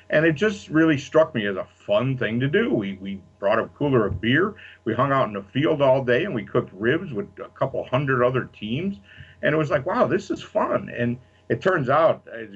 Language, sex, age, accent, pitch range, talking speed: English, male, 50-69, American, 100-130 Hz, 240 wpm